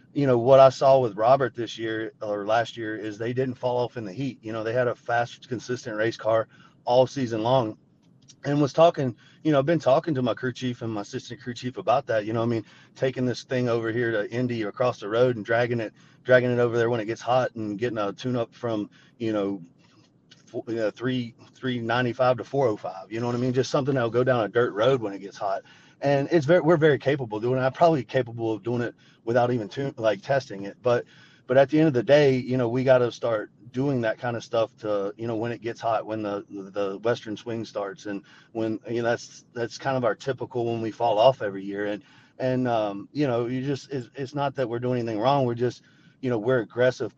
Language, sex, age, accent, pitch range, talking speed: English, male, 30-49, American, 115-130 Hz, 250 wpm